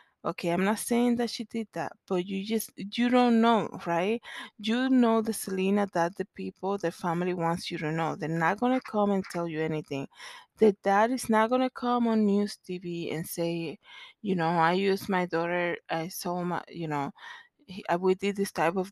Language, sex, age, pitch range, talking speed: English, female, 20-39, 175-225 Hz, 205 wpm